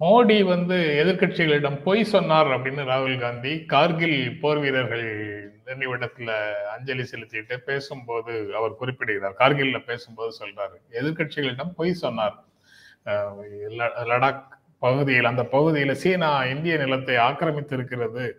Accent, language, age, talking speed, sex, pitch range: native, Tamil, 30-49, 110 wpm, male, 125-160 Hz